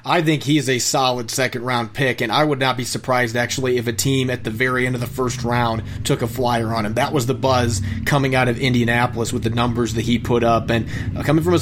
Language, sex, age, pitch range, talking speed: English, male, 30-49, 125-150 Hz, 260 wpm